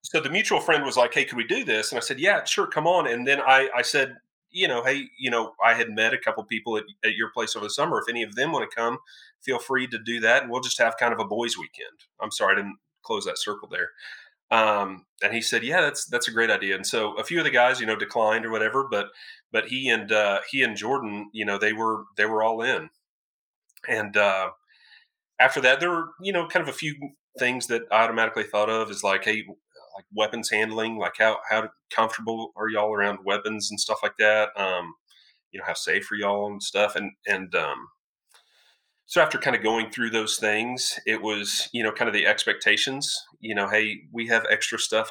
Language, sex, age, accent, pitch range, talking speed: English, male, 30-49, American, 105-120 Hz, 240 wpm